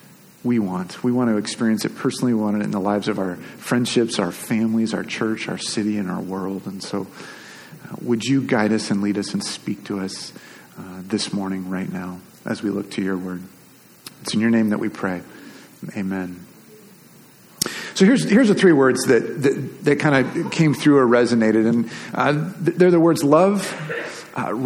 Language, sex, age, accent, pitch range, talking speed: English, male, 40-59, American, 115-155 Hz, 195 wpm